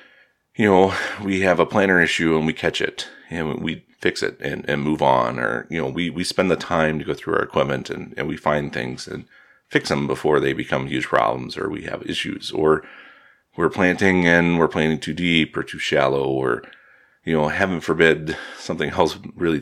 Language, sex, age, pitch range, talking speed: English, male, 30-49, 80-95 Hz, 210 wpm